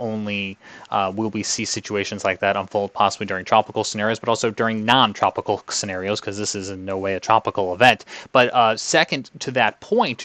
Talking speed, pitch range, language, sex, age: 195 wpm, 105-125 Hz, English, male, 20-39